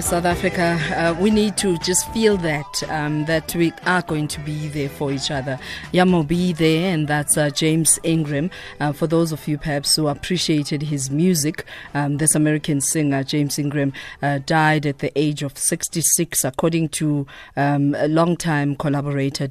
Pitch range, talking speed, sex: 140-160 Hz, 180 wpm, female